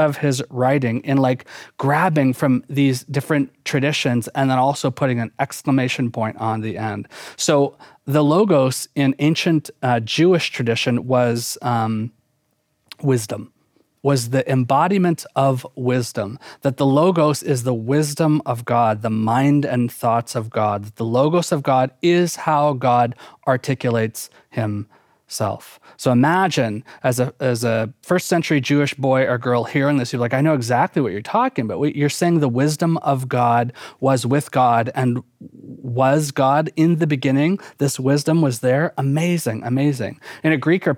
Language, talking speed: English, 160 wpm